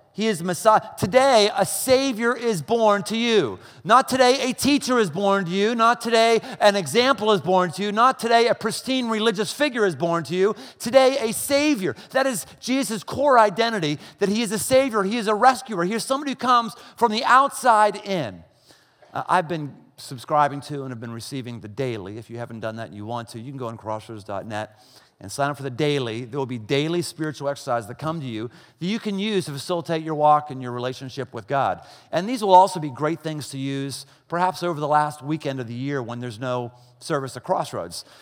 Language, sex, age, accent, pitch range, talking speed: English, male, 40-59, American, 135-215 Hz, 220 wpm